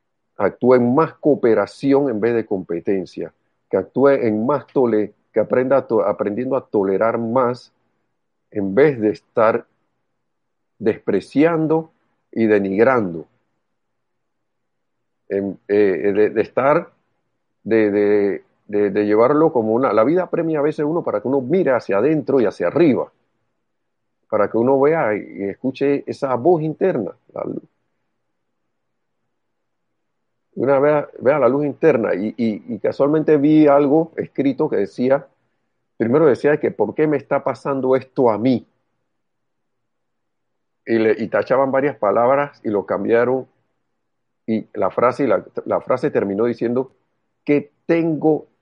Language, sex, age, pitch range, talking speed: Spanish, male, 50-69, 110-150 Hz, 135 wpm